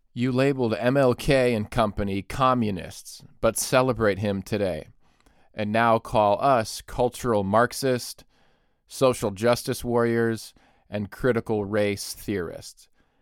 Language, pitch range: English, 100-120 Hz